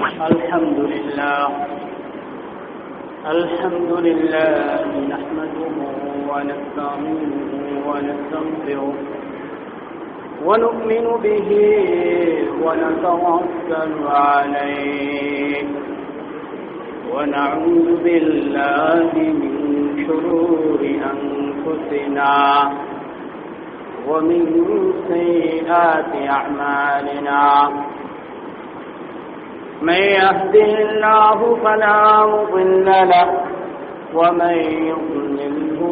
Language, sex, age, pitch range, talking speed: Bengali, male, 50-69, 145-190 Hz, 45 wpm